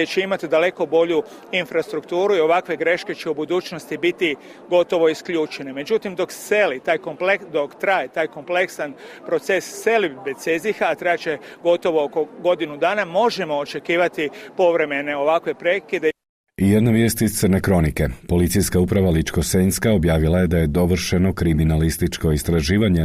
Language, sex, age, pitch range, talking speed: Croatian, male, 40-59, 80-120 Hz, 140 wpm